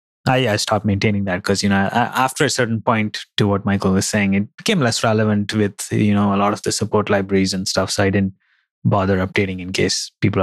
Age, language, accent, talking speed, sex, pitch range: 30-49, English, Indian, 230 wpm, male, 100-135 Hz